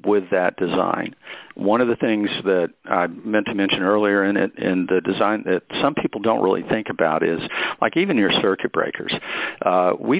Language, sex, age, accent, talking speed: English, male, 50-69, American, 195 wpm